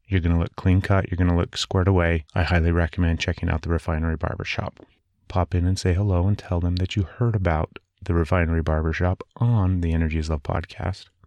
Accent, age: American, 30-49